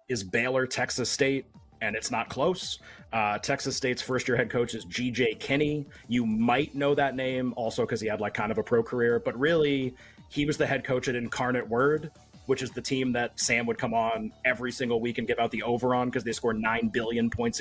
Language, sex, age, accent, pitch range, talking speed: English, male, 30-49, American, 115-135 Hz, 230 wpm